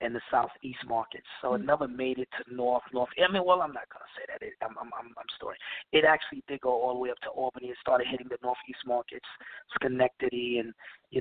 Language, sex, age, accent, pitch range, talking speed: English, male, 30-49, American, 120-140 Hz, 235 wpm